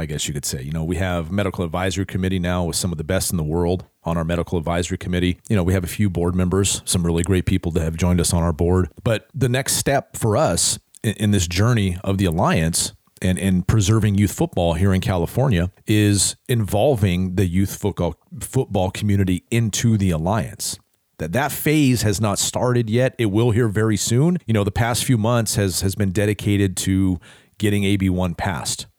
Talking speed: 205 wpm